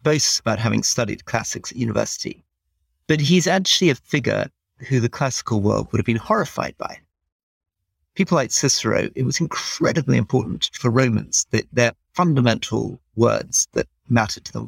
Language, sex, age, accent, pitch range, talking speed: English, male, 40-59, British, 95-130 Hz, 155 wpm